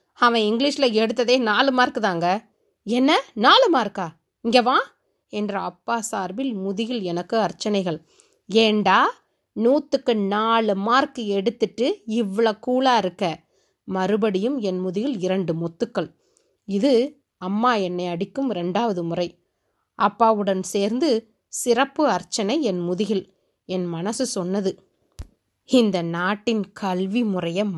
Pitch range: 185-240 Hz